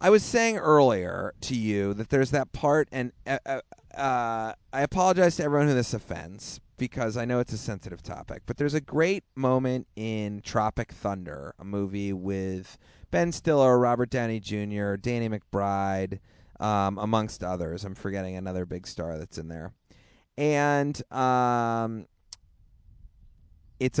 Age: 30-49